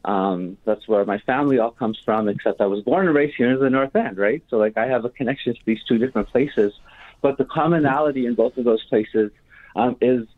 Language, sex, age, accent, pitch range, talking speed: English, male, 30-49, American, 105-125 Hz, 235 wpm